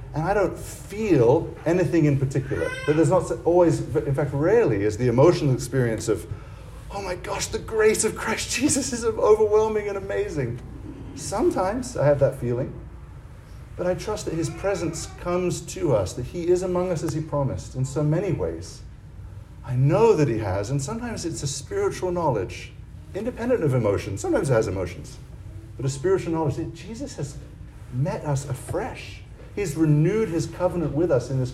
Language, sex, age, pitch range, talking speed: English, male, 50-69, 110-160 Hz, 175 wpm